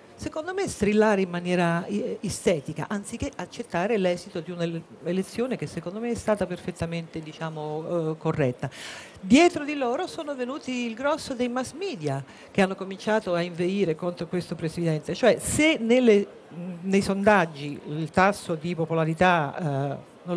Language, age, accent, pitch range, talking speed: Italian, 50-69, native, 170-225 Hz, 135 wpm